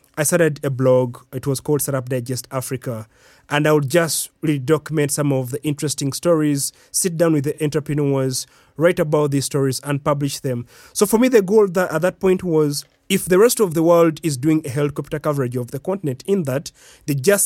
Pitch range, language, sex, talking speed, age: 140-175 Hz, English, male, 205 wpm, 30-49